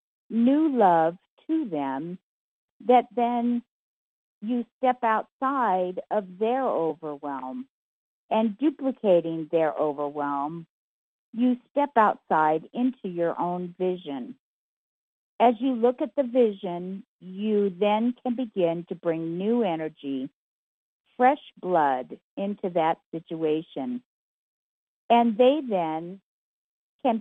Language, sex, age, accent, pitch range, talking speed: English, female, 50-69, American, 165-240 Hz, 100 wpm